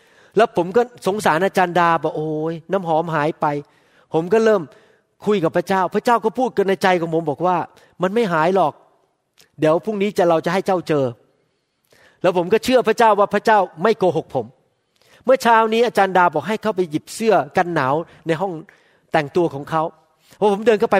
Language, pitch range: Thai, 165-230 Hz